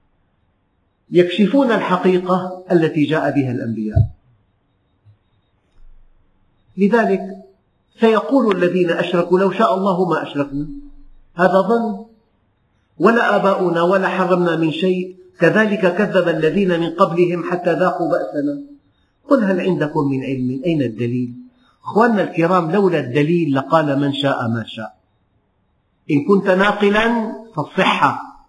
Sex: male